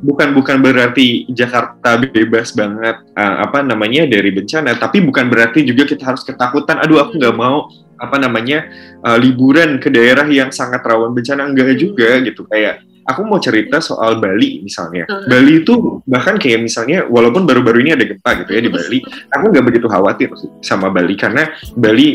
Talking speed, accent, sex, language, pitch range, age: 175 wpm, native, male, Indonesian, 110-130 Hz, 20-39